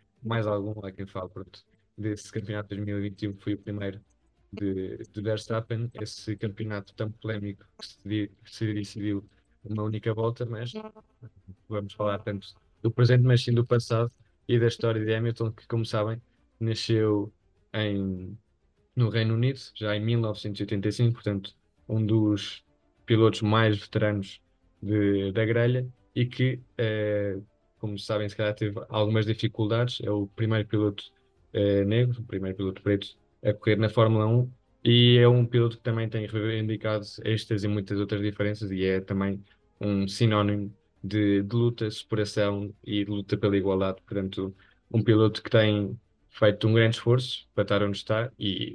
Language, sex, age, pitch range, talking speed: Portuguese, male, 20-39, 100-115 Hz, 165 wpm